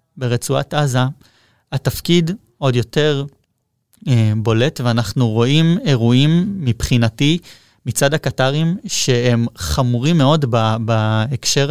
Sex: male